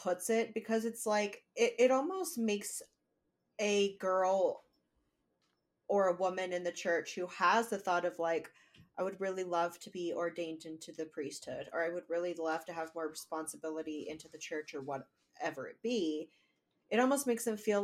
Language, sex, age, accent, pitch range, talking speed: English, female, 30-49, American, 165-200 Hz, 180 wpm